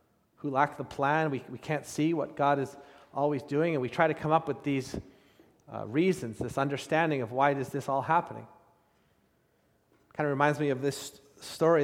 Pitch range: 135-165 Hz